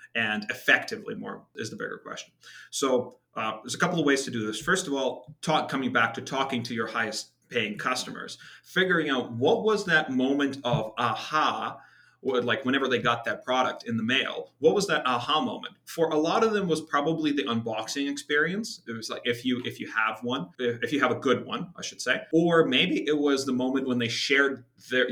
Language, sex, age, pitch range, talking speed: English, male, 30-49, 120-145 Hz, 215 wpm